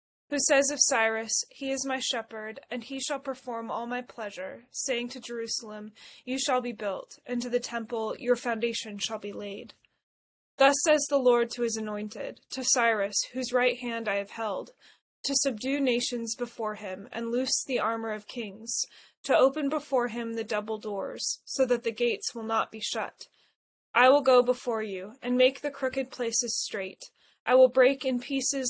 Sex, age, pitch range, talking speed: female, 20-39, 225-260 Hz, 185 wpm